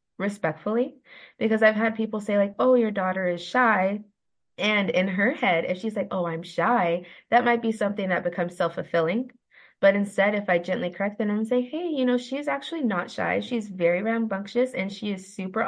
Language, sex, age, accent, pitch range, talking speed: English, female, 20-39, American, 170-225 Hz, 205 wpm